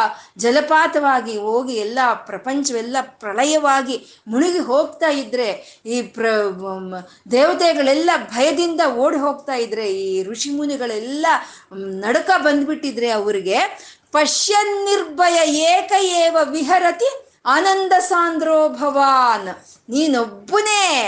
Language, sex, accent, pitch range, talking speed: Kannada, female, native, 240-330 Hz, 75 wpm